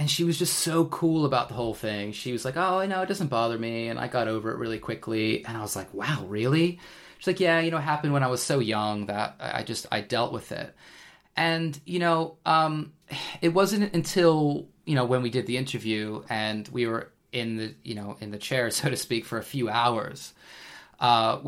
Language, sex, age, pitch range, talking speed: English, male, 20-39, 115-145 Hz, 230 wpm